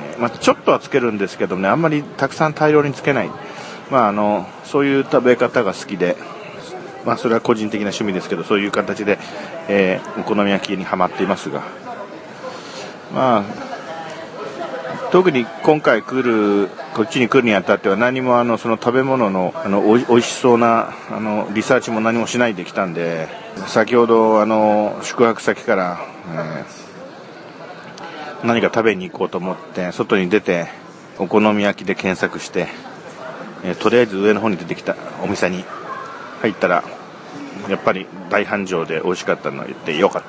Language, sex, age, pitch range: Japanese, male, 40-59, 100-125 Hz